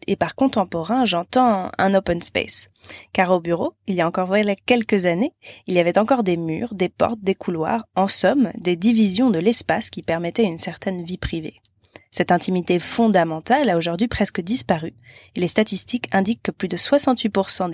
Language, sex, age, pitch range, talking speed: French, female, 20-39, 175-225 Hz, 180 wpm